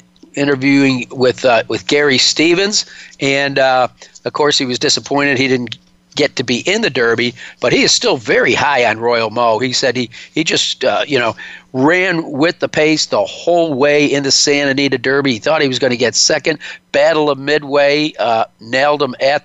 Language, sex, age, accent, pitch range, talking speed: English, male, 50-69, American, 125-145 Hz, 200 wpm